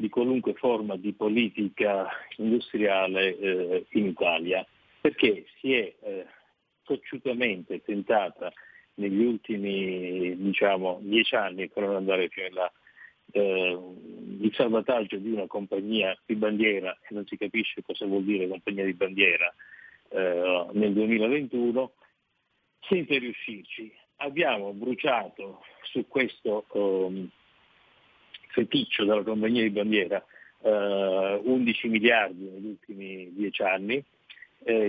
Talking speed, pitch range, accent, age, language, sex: 105 wpm, 100-125 Hz, native, 50-69, Italian, male